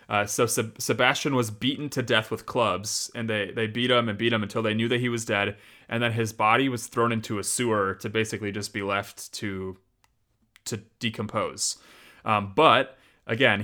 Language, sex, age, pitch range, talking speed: English, male, 30-49, 105-120 Hz, 195 wpm